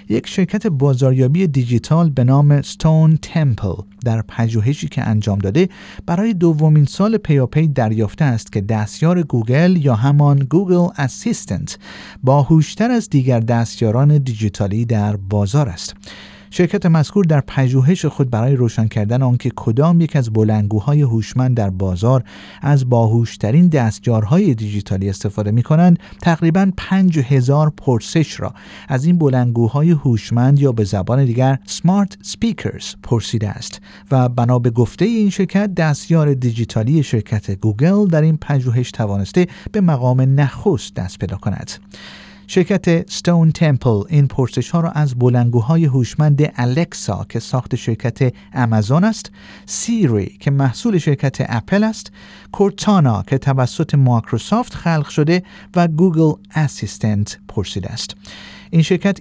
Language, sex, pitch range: Persian, male, 115-170 Hz